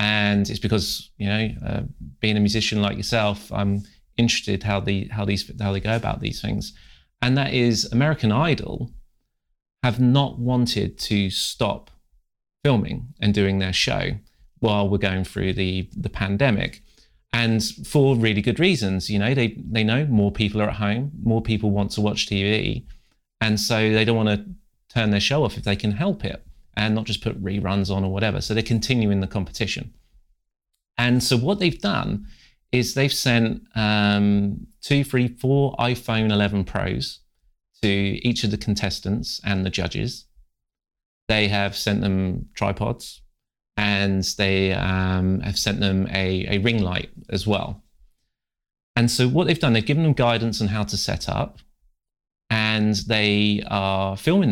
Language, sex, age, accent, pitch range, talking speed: English, male, 30-49, British, 100-120 Hz, 165 wpm